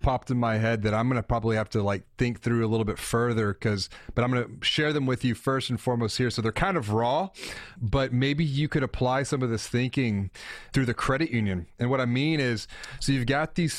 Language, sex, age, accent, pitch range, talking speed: English, male, 30-49, American, 110-140 Hz, 255 wpm